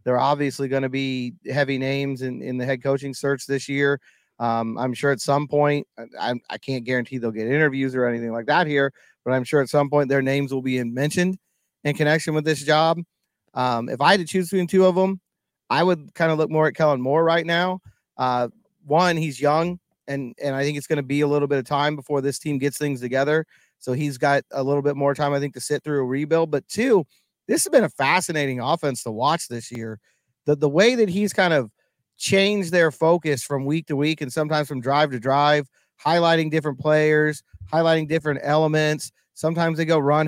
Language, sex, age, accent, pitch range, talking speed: English, male, 30-49, American, 135-165 Hz, 225 wpm